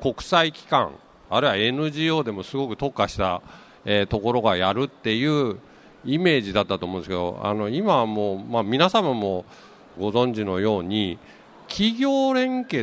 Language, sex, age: Japanese, male, 50-69